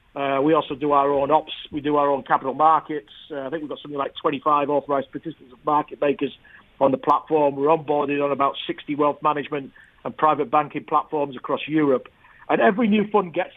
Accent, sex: British, male